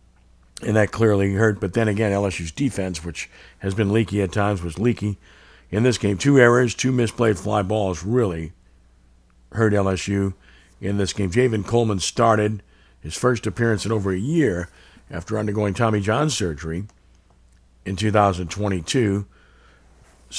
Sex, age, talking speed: male, 50-69, 145 wpm